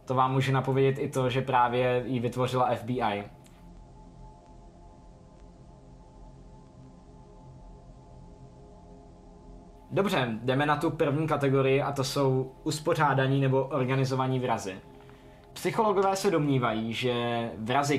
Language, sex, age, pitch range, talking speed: Czech, male, 20-39, 130-150 Hz, 95 wpm